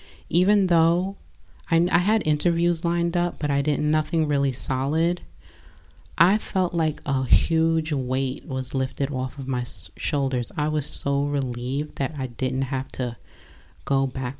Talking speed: 155 wpm